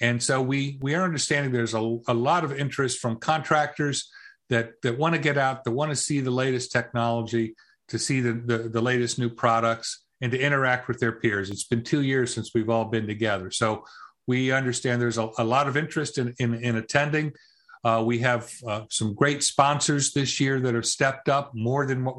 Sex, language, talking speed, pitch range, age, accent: male, English, 215 wpm, 115-140 Hz, 50-69, American